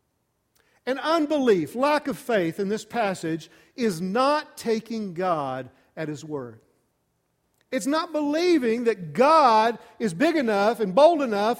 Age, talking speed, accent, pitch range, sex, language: 50-69, 135 wpm, American, 210-290 Hz, male, English